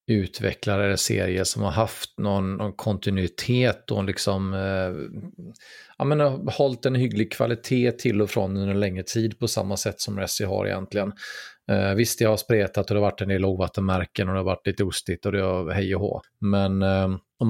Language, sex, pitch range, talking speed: English, male, 95-115 Hz, 205 wpm